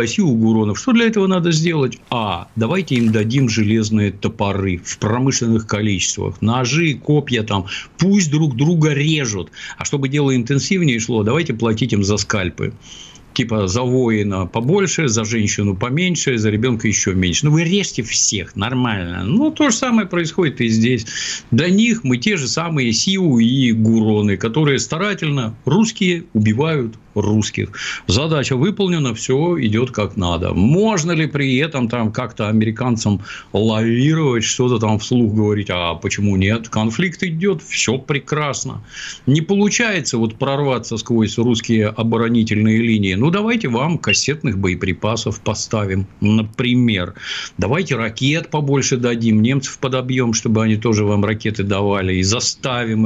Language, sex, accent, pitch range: Russian, male, native, 110-145 Hz